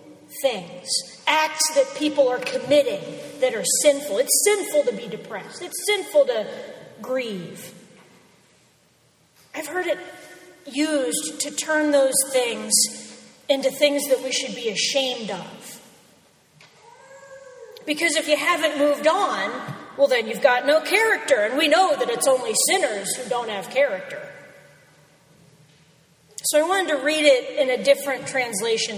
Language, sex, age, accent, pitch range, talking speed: English, female, 40-59, American, 230-300 Hz, 140 wpm